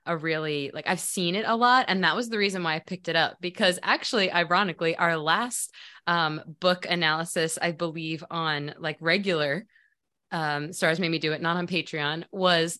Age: 20-39